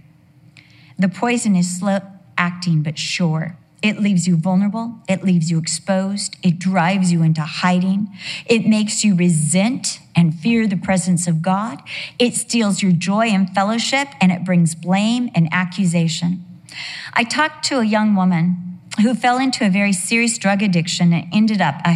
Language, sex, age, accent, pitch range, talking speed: English, female, 40-59, American, 165-210 Hz, 165 wpm